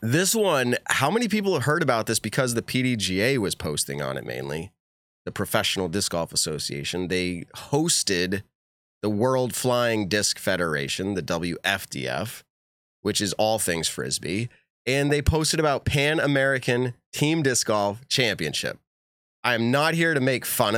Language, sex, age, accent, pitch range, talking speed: English, male, 30-49, American, 100-130 Hz, 150 wpm